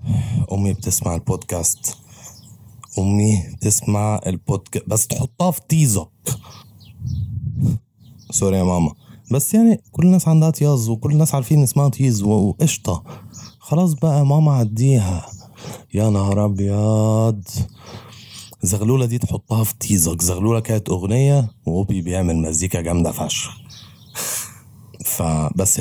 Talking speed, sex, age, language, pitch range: 110 wpm, male, 30-49, Arabic, 95-125 Hz